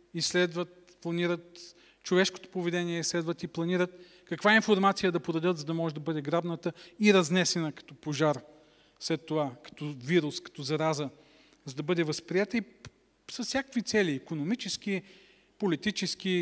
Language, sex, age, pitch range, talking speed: Bulgarian, male, 40-59, 150-185 Hz, 135 wpm